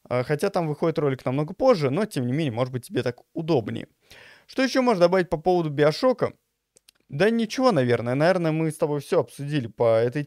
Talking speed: 195 wpm